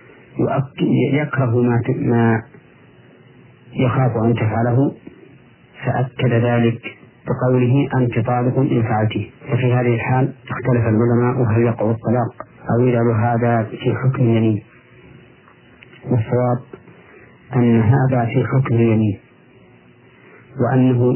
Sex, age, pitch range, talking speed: male, 40-59, 115-130 Hz, 90 wpm